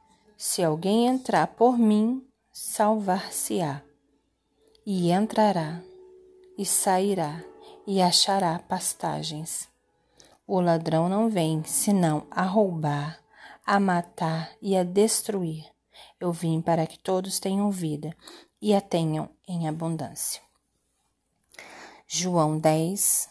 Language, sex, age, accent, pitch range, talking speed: Portuguese, female, 30-49, Brazilian, 170-205 Hz, 100 wpm